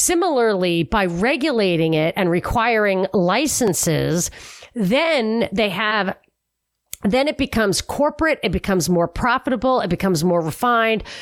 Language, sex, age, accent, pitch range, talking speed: English, female, 40-59, American, 200-275 Hz, 120 wpm